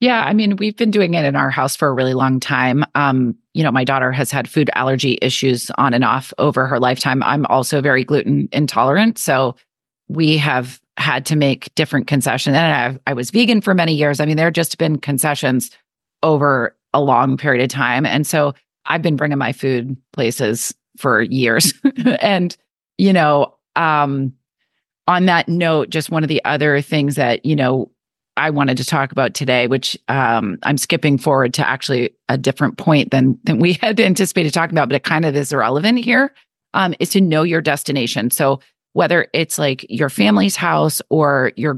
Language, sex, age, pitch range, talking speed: English, female, 30-49, 135-160 Hz, 195 wpm